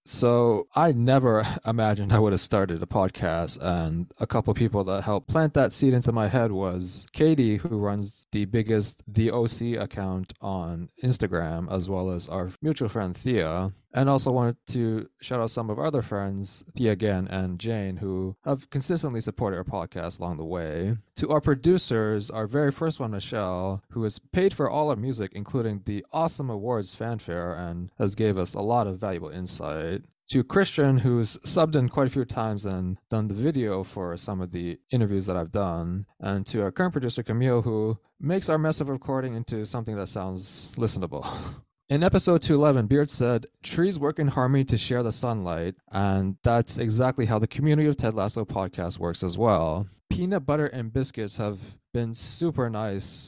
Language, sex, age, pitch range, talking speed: English, male, 20-39, 95-125 Hz, 185 wpm